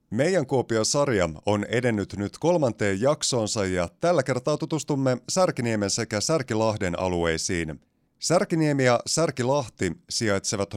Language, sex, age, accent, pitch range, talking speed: Finnish, male, 30-49, native, 95-140 Hz, 105 wpm